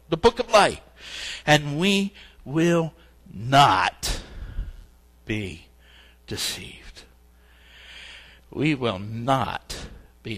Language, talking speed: English, 80 wpm